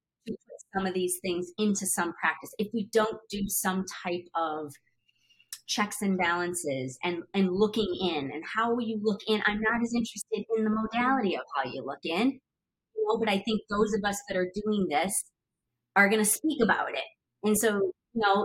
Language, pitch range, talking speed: English, 180-220 Hz, 200 wpm